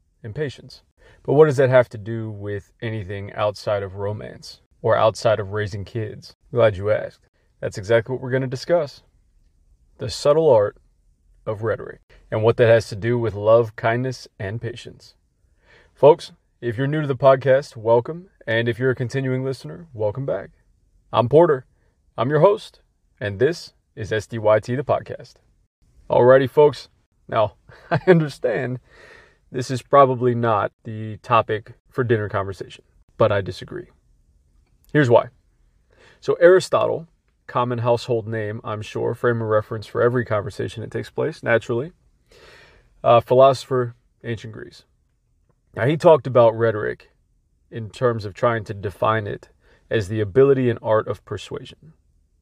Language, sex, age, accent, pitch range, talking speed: English, male, 30-49, American, 105-130 Hz, 150 wpm